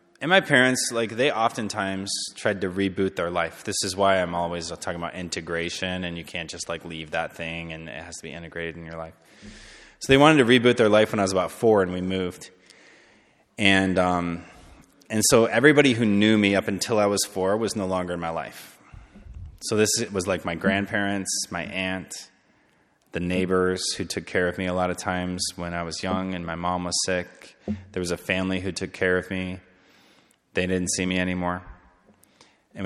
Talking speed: 205 wpm